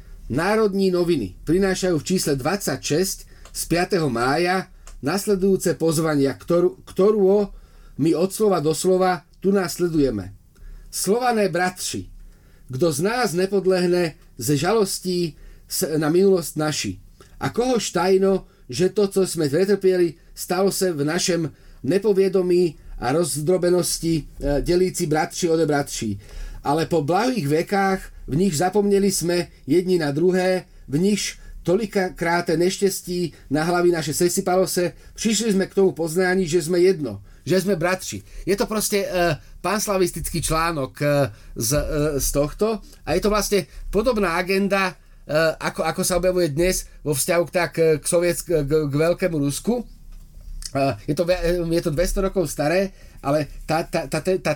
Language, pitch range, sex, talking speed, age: Slovak, 155-190 Hz, male, 135 wpm, 40-59